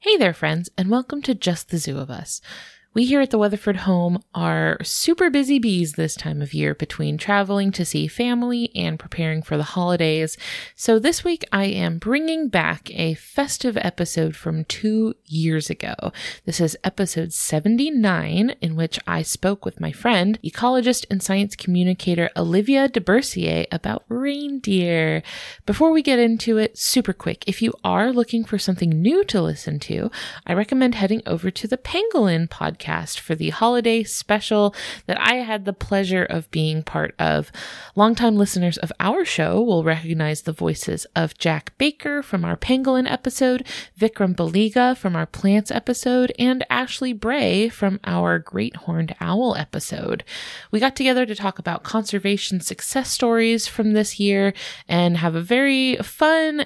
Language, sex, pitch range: English, female, 170-240 Hz